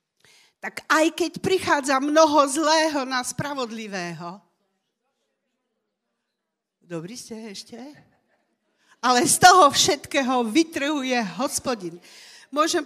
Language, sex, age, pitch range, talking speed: Slovak, female, 40-59, 200-280 Hz, 85 wpm